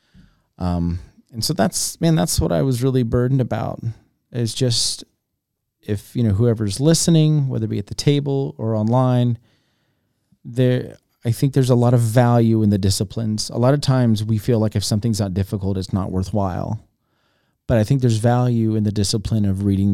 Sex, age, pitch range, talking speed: male, 30-49, 100-125 Hz, 185 wpm